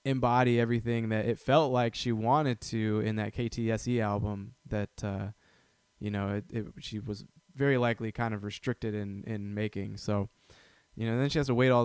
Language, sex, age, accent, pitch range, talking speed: English, male, 20-39, American, 105-125 Hz, 195 wpm